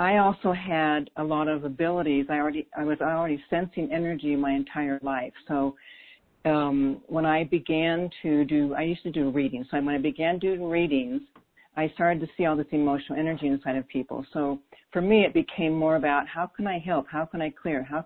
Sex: female